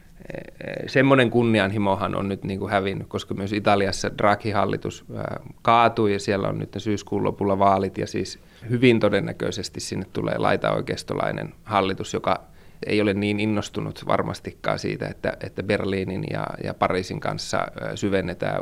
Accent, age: native, 20-39